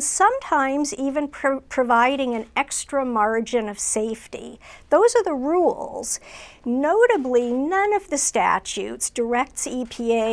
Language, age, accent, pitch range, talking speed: English, 50-69, American, 225-285 Hz, 110 wpm